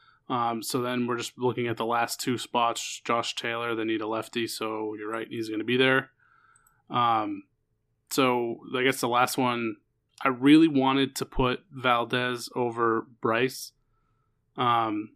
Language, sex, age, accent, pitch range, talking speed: English, male, 20-39, American, 110-130 Hz, 160 wpm